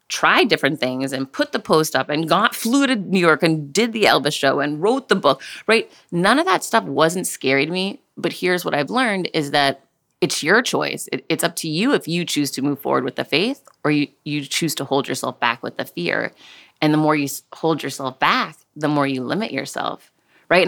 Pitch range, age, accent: 140-180 Hz, 30-49, American